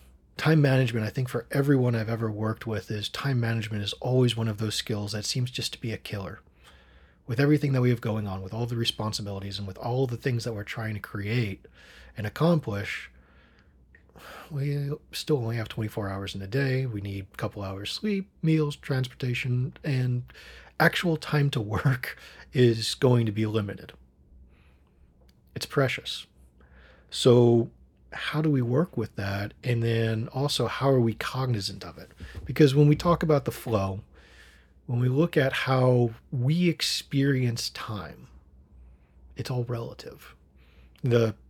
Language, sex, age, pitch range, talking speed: English, male, 40-59, 95-130 Hz, 165 wpm